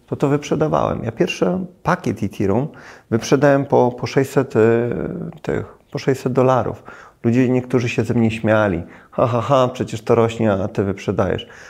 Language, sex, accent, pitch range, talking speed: Polish, male, native, 100-125 Hz, 150 wpm